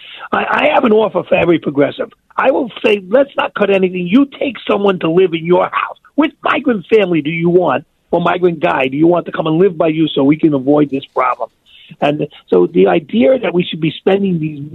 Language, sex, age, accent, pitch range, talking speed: English, male, 50-69, American, 155-205 Hz, 230 wpm